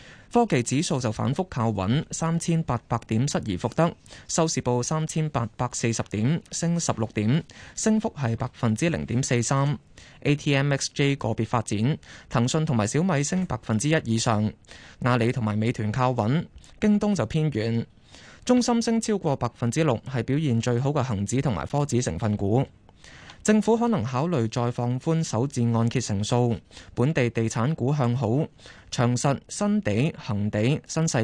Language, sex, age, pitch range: Chinese, male, 20-39, 115-155 Hz